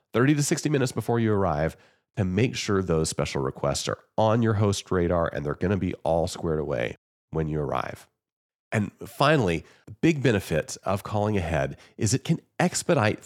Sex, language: male, English